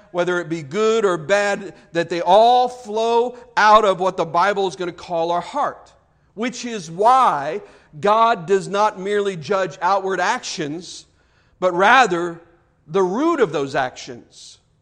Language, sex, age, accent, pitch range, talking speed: English, male, 50-69, American, 175-210 Hz, 155 wpm